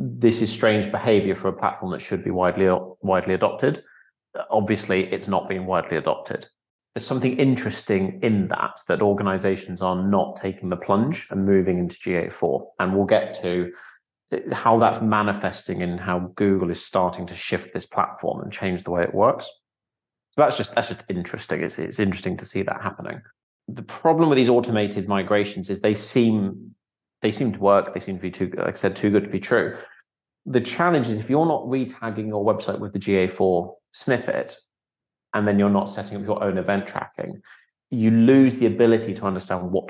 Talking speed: 190 wpm